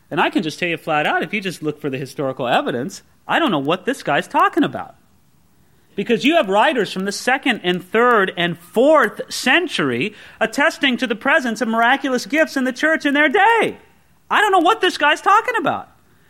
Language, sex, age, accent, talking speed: English, male, 40-59, American, 210 wpm